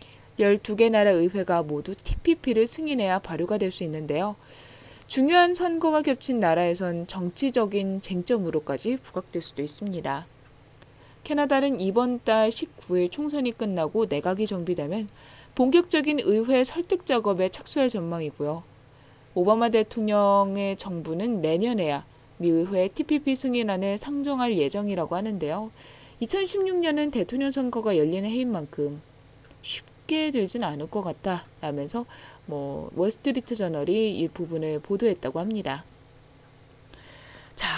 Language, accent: Korean, native